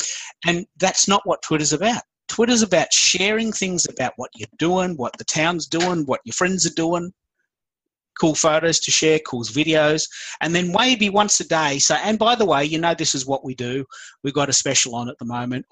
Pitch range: 125-170 Hz